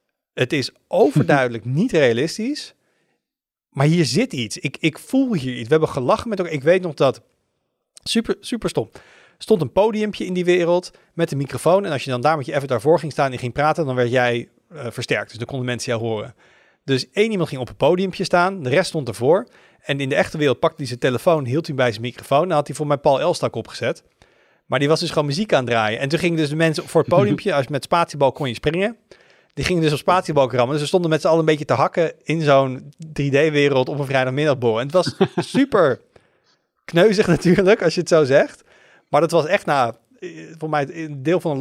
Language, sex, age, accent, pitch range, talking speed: Dutch, male, 40-59, Dutch, 135-180 Hz, 235 wpm